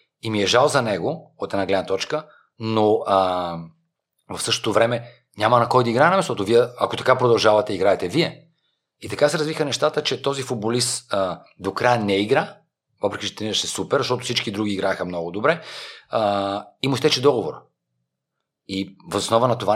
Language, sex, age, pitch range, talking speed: Bulgarian, male, 40-59, 100-125 Hz, 180 wpm